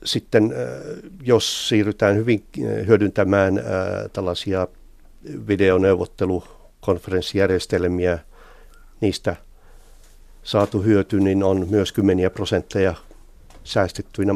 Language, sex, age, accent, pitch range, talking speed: Finnish, male, 60-79, native, 85-100 Hz, 65 wpm